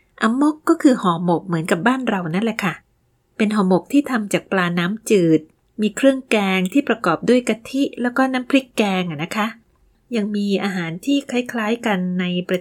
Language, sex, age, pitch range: Thai, female, 20-39, 190-255 Hz